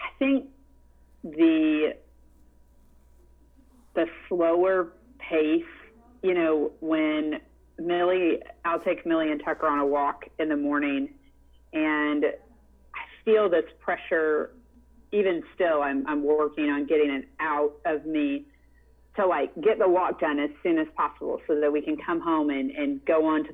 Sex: female